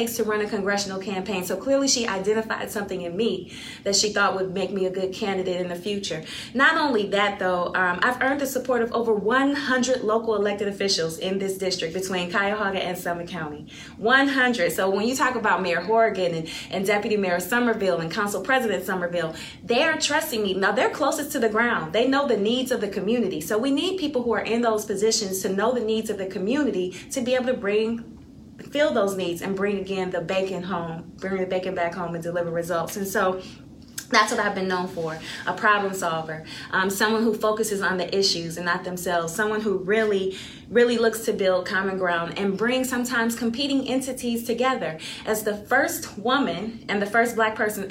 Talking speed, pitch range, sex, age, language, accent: 205 wpm, 185-230 Hz, female, 30-49, English, American